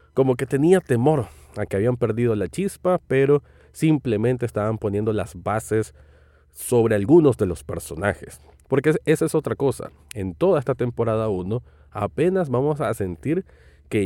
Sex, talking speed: male, 155 wpm